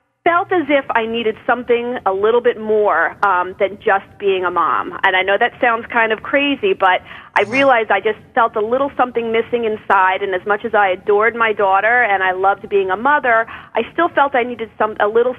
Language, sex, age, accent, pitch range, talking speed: English, female, 40-59, American, 195-255 Hz, 220 wpm